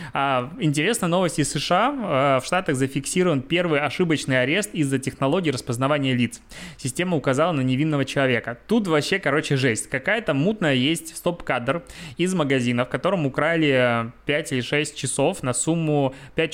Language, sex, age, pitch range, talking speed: Russian, male, 20-39, 130-155 Hz, 150 wpm